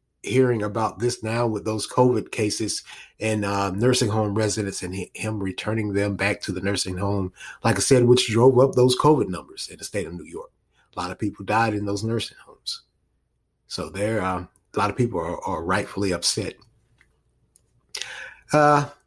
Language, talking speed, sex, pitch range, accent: English, 185 wpm, male, 110-145 Hz, American